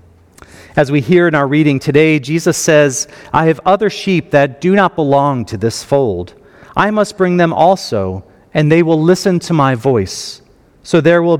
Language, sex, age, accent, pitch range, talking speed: English, male, 40-59, American, 115-165 Hz, 185 wpm